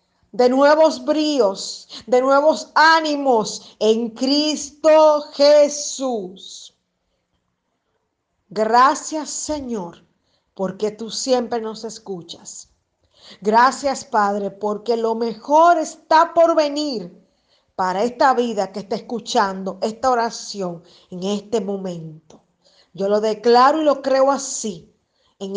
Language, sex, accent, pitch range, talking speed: Spanish, female, American, 195-255 Hz, 100 wpm